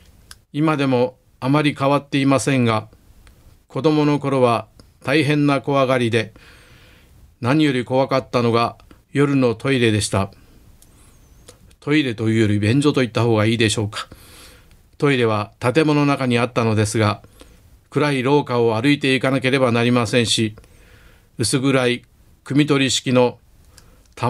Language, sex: Japanese, male